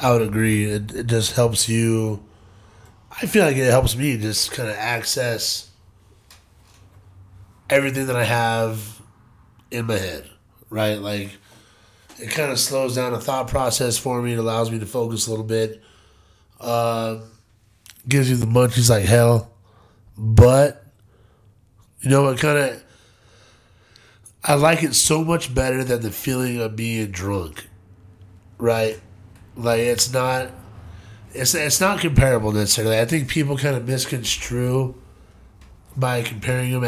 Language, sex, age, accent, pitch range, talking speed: English, male, 20-39, American, 105-130 Hz, 145 wpm